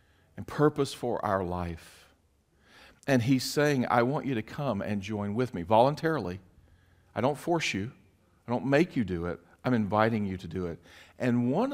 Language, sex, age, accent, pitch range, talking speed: English, male, 50-69, American, 90-135 Hz, 185 wpm